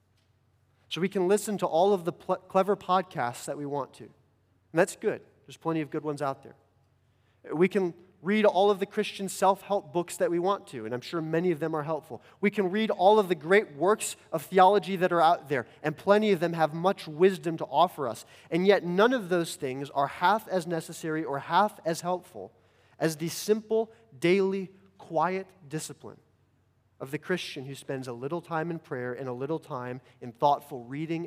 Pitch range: 115-170 Hz